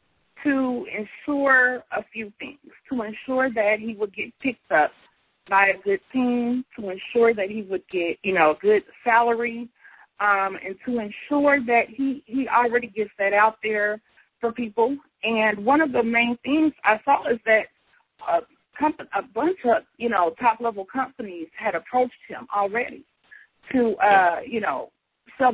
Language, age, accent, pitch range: English, 30-49, American, 215-265 Hz